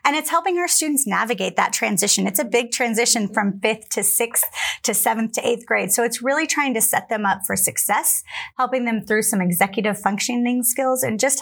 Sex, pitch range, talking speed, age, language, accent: female, 205-245 Hz, 210 wpm, 30-49, English, American